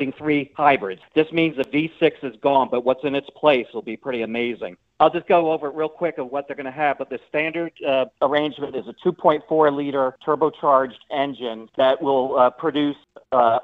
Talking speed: 200 wpm